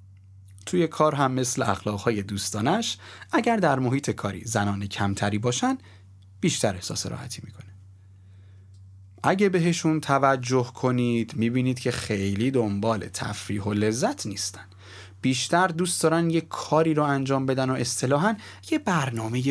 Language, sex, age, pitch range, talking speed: Persian, male, 30-49, 100-145 Hz, 130 wpm